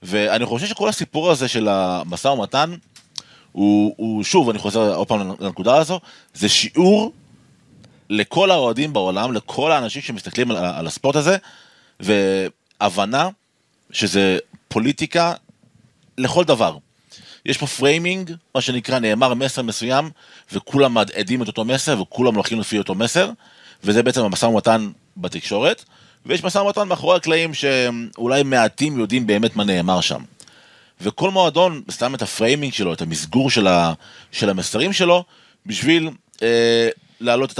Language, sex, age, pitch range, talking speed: Hebrew, male, 30-49, 105-150 Hz, 135 wpm